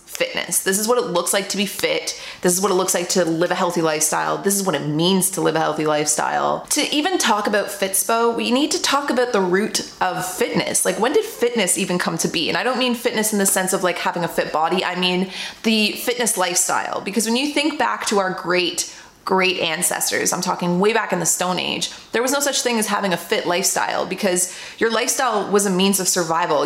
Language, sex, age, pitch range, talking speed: English, female, 20-39, 180-225 Hz, 245 wpm